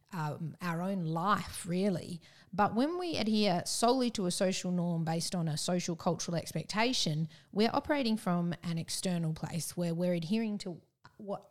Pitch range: 160-200 Hz